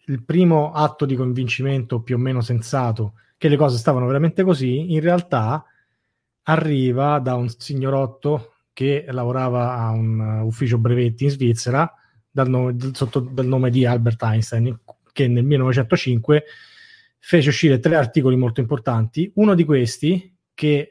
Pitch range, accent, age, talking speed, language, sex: 120-145 Hz, native, 30-49, 140 wpm, Italian, male